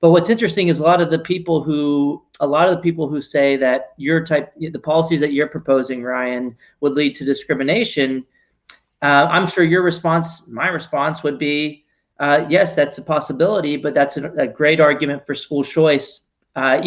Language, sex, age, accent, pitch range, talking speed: English, male, 30-49, American, 135-160 Hz, 190 wpm